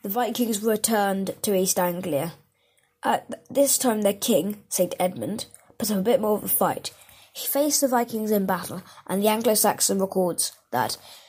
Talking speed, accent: 170 wpm, British